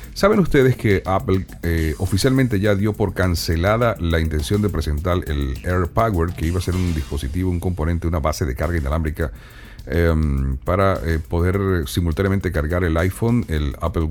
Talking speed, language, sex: 165 wpm, Spanish, male